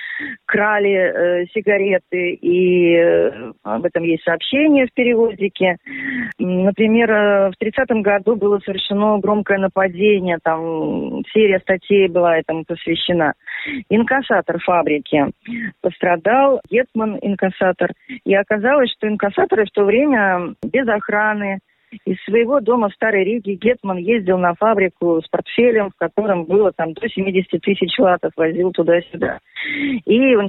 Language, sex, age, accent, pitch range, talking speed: Russian, female, 30-49, native, 180-230 Hz, 130 wpm